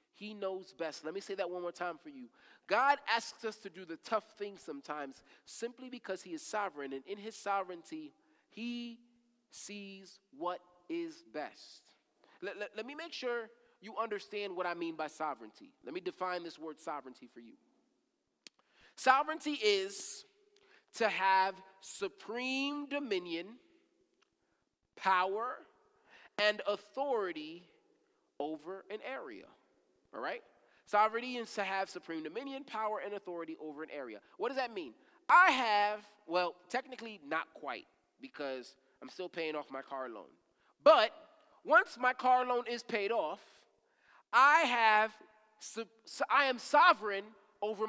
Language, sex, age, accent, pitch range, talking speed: English, male, 30-49, American, 190-275 Hz, 140 wpm